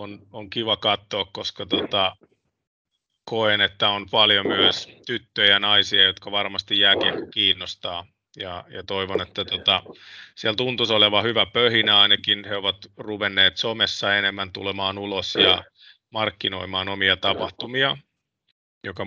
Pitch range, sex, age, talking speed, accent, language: 100-110 Hz, male, 30-49, 115 wpm, native, Finnish